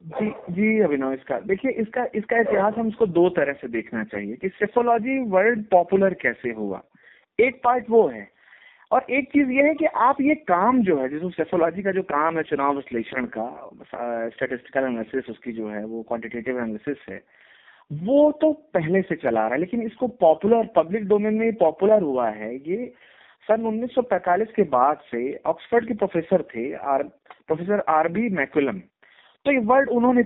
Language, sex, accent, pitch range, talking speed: Hindi, male, native, 140-225 Hz, 170 wpm